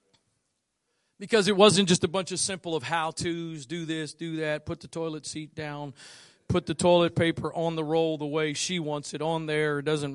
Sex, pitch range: male, 145-170 Hz